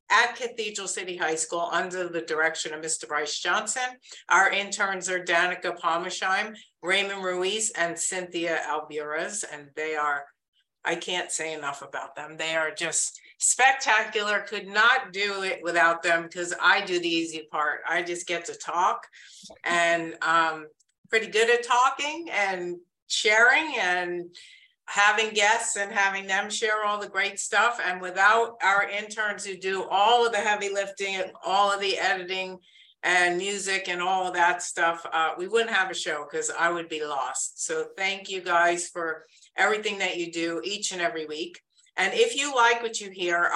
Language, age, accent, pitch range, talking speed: English, 50-69, American, 170-205 Hz, 170 wpm